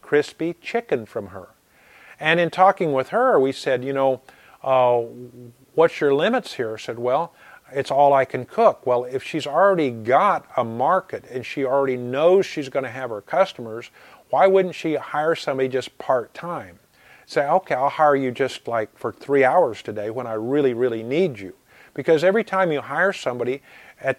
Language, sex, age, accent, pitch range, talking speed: English, male, 40-59, American, 125-160 Hz, 185 wpm